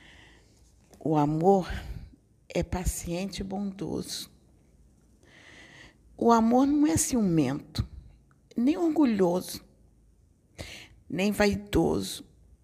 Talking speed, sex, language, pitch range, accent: 70 wpm, female, Portuguese, 155-205 Hz, Brazilian